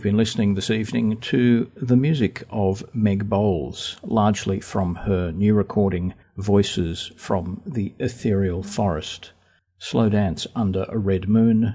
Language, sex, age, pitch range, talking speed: English, male, 50-69, 90-105 Hz, 135 wpm